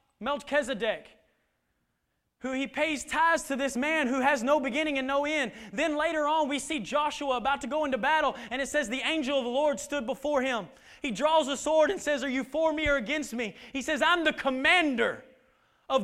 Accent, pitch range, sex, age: American, 270-310 Hz, male, 20-39